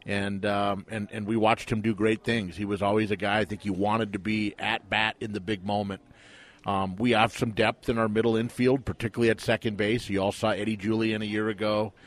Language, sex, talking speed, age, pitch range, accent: English, male, 240 wpm, 40-59, 105-115 Hz, American